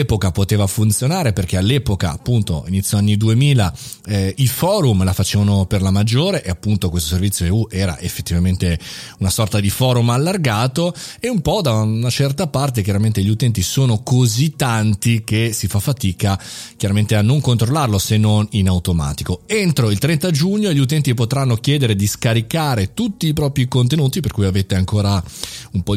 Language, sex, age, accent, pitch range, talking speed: Italian, male, 30-49, native, 100-140 Hz, 170 wpm